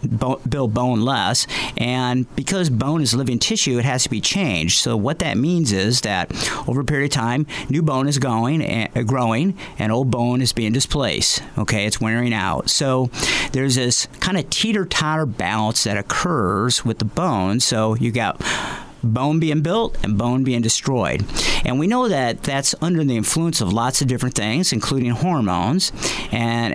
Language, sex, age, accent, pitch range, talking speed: English, male, 50-69, American, 115-145 Hz, 180 wpm